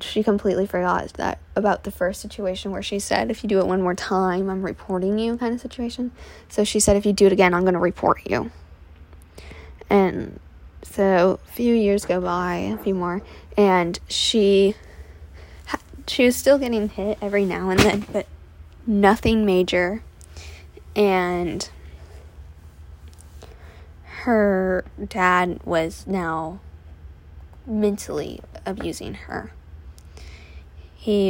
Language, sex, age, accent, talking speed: English, female, 10-29, American, 135 wpm